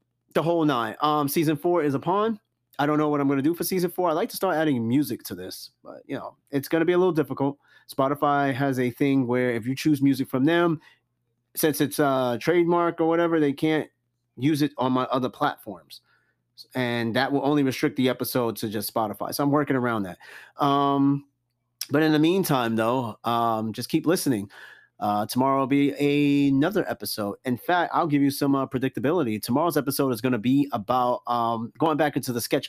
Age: 30-49